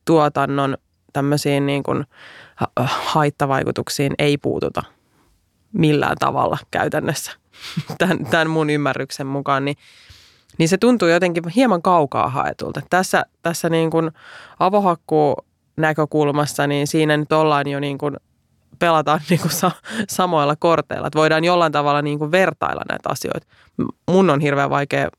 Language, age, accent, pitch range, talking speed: Finnish, 20-39, native, 145-170 Hz, 125 wpm